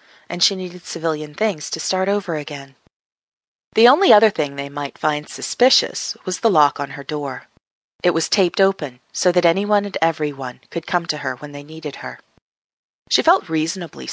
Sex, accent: female, American